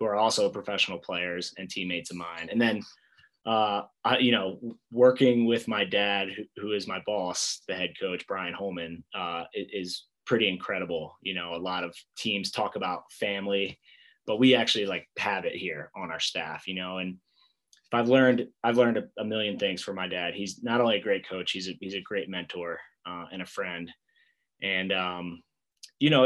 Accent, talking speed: American, 190 wpm